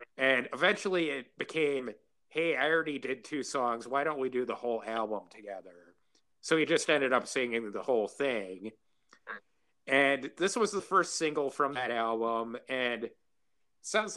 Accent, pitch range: American, 110-145 Hz